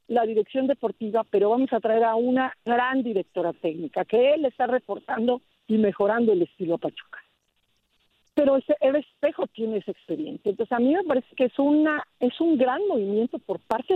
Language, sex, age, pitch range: Spanish, female, 50-69, 220-295 Hz